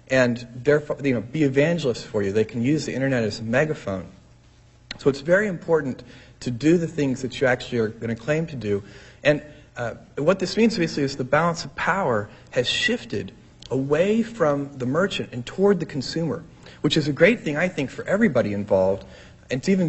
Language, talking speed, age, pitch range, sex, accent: English, 200 wpm, 40-59, 115-150 Hz, male, American